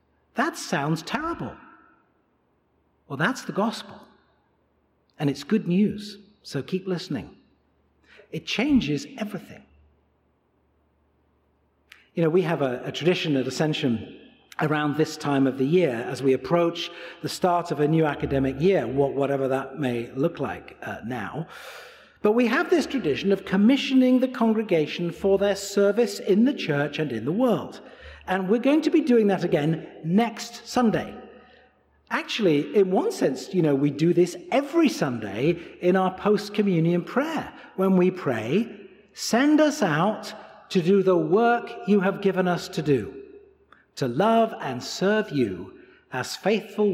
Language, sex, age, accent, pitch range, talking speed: English, male, 50-69, British, 135-205 Hz, 150 wpm